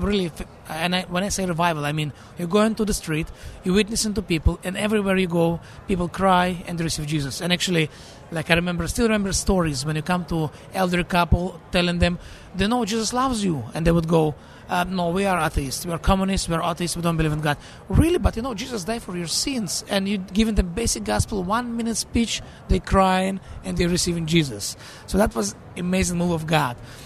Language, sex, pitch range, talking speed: English, male, 155-195 Hz, 220 wpm